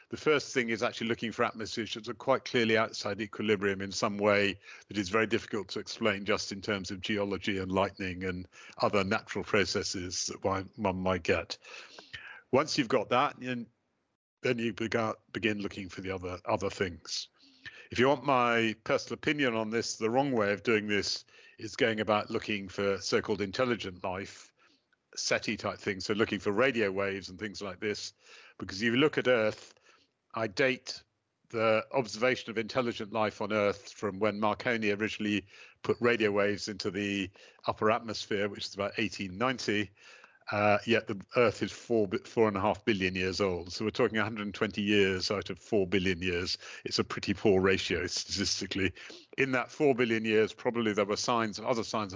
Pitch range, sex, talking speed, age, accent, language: 100-115 Hz, male, 185 wpm, 50-69, British, English